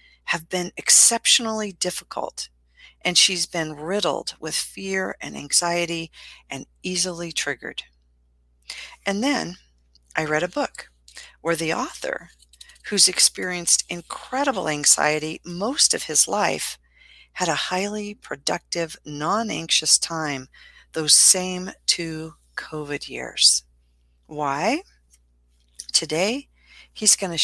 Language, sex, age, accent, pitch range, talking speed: English, female, 50-69, American, 135-190 Hz, 105 wpm